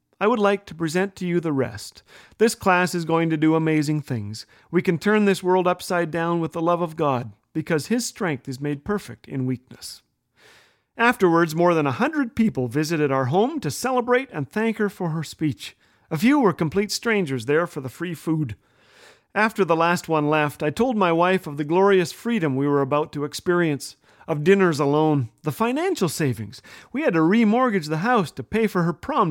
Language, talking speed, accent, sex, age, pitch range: English, 205 wpm, American, male, 40-59, 145-195 Hz